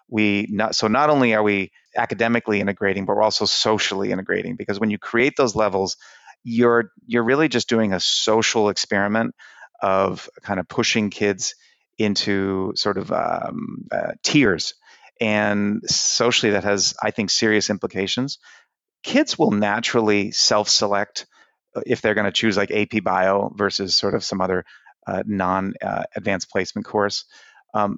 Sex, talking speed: male, 150 wpm